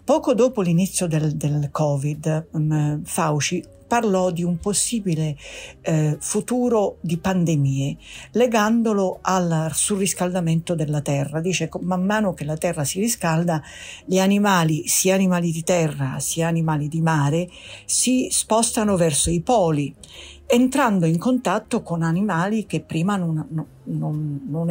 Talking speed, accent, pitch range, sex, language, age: 130 wpm, native, 160-200 Hz, female, Italian, 50-69